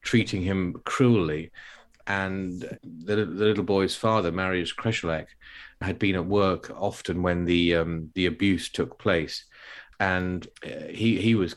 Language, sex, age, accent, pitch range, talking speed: English, male, 40-59, British, 90-115 Hz, 140 wpm